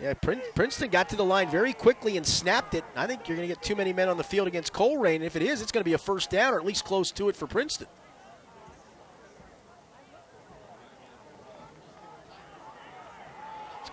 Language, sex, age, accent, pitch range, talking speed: English, male, 30-49, American, 175-250 Hz, 190 wpm